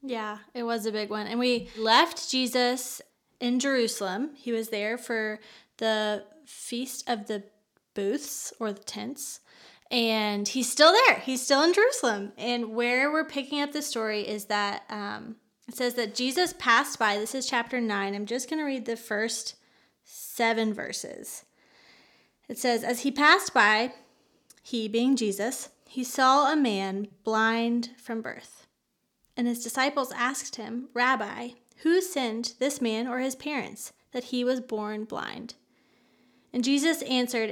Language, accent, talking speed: English, American, 155 wpm